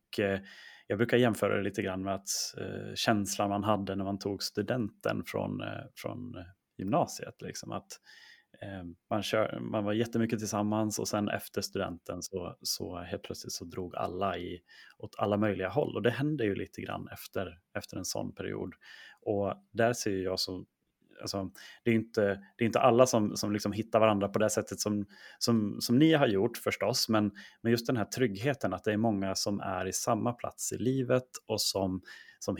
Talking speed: 190 wpm